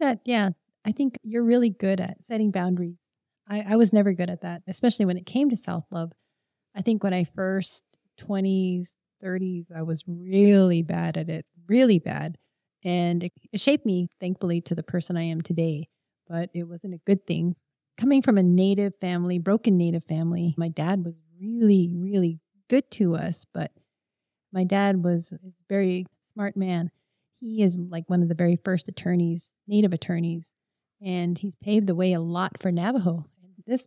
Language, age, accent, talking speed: English, 30-49, American, 175 wpm